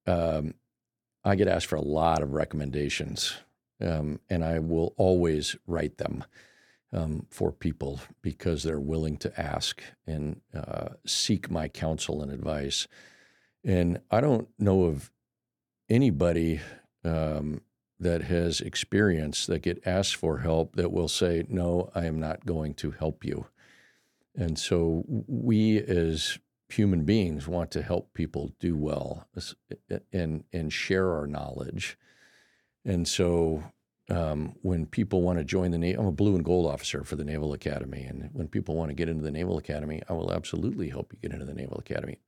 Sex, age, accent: male, 50-69, American